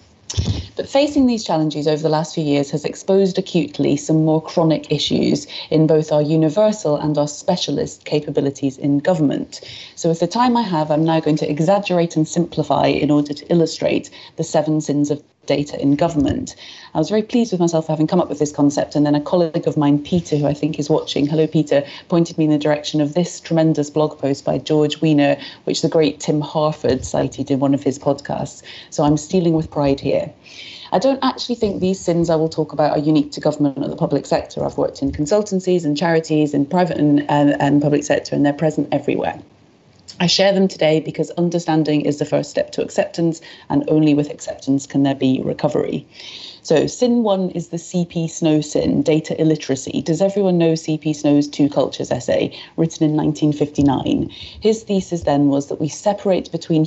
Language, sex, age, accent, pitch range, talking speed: English, female, 30-49, British, 145-170 Hz, 200 wpm